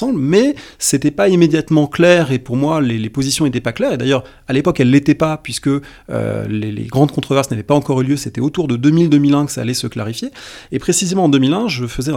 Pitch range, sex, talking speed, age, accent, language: 120-150 Hz, male, 240 wpm, 30-49, French, French